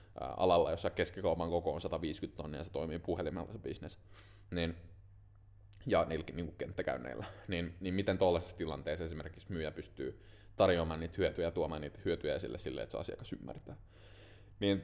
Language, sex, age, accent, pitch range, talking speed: Finnish, male, 20-39, native, 85-100 Hz, 160 wpm